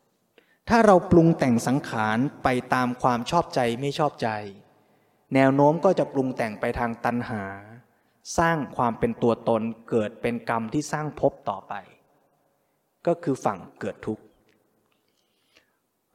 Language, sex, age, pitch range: Thai, male, 20-39, 120-155 Hz